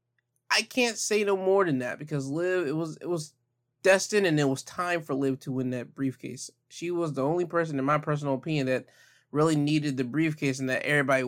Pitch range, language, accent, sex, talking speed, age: 135-165 Hz, English, American, male, 220 wpm, 20-39